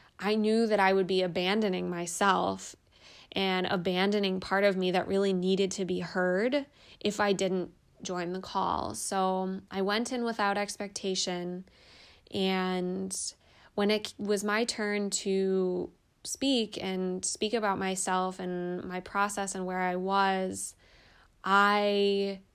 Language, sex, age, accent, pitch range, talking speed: English, female, 20-39, American, 180-195 Hz, 135 wpm